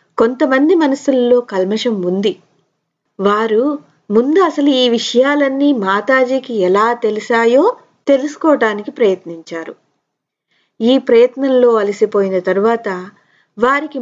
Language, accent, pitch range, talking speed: Telugu, native, 190-265 Hz, 80 wpm